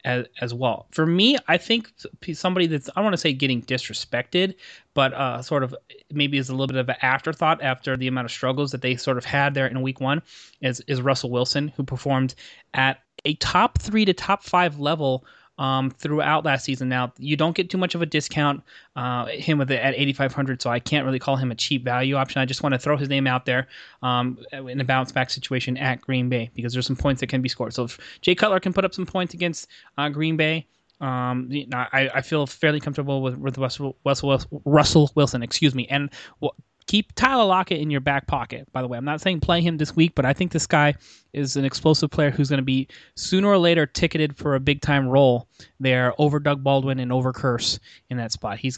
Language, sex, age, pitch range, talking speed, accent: English, male, 20-39, 125-150 Hz, 230 wpm, American